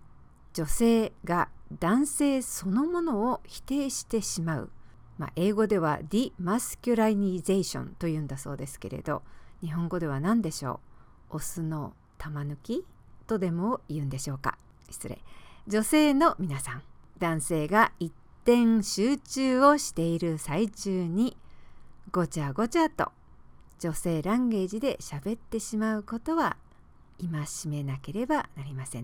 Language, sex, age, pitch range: English, female, 50-69, 155-240 Hz